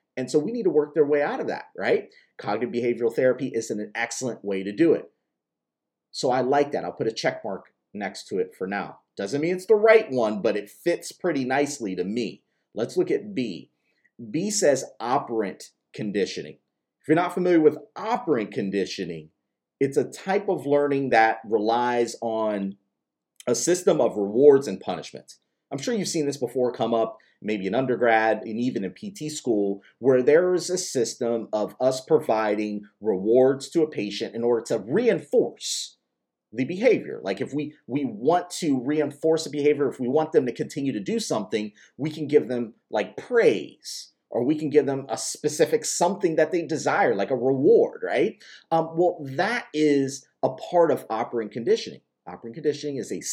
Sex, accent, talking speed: male, American, 185 wpm